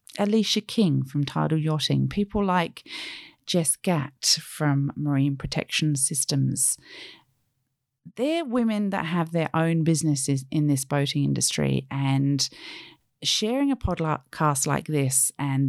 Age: 40-59